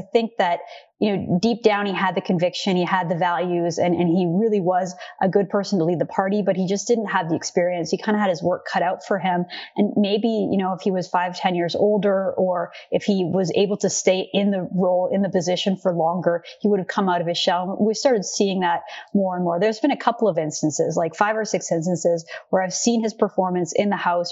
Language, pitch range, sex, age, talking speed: English, 180-205 Hz, female, 30-49, 255 wpm